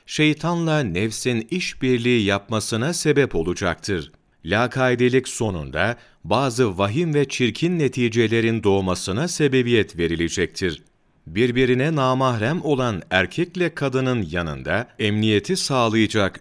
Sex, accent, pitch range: male, native, 95-130 Hz